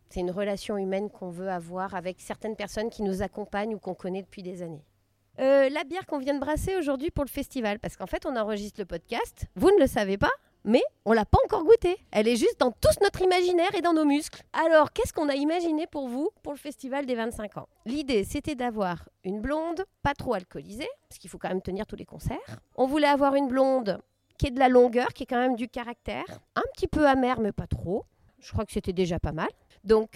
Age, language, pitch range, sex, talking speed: 30-49, French, 205-290 Hz, female, 240 wpm